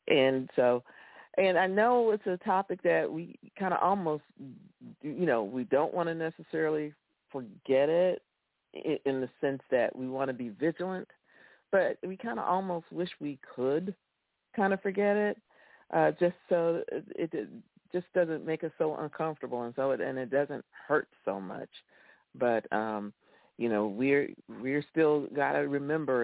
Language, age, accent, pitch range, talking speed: English, 50-69, American, 130-165 Hz, 165 wpm